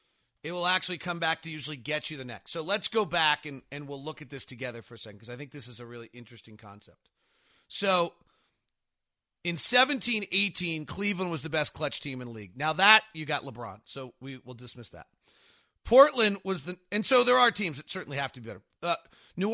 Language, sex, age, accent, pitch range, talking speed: English, male, 40-59, American, 150-205 Hz, 220 wpm